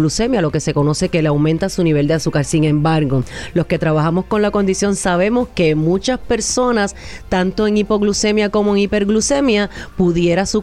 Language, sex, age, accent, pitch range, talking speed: Spanish, female, 30-49, American, 160-205 Hz, 180 wpm